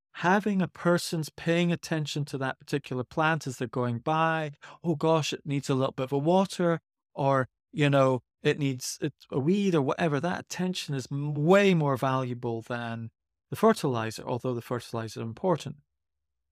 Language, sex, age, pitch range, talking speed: English, male, 40-59, 135-180 Hz, 170 wpm